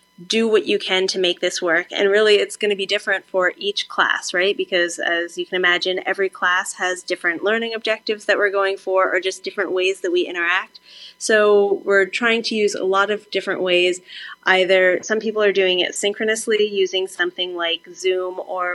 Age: 20-39